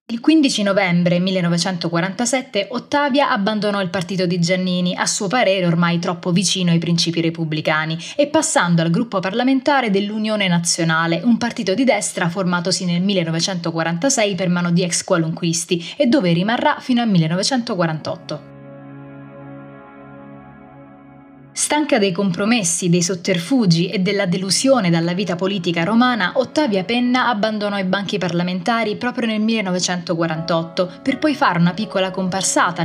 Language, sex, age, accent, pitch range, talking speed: Italian, female, 20-39, native, 170-230 Hz, 130 wpm